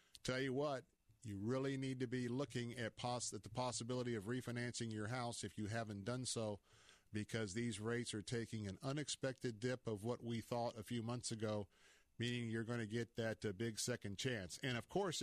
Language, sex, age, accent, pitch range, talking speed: English, male, 50-69, American, 115-135 Hz, 205 wpm